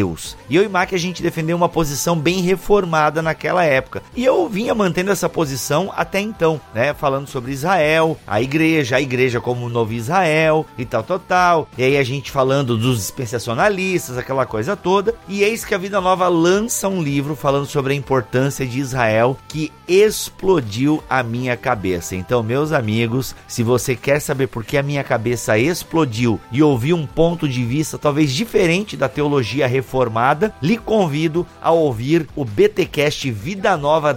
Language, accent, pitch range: Portuguese, Brazilian, 125-175 Hz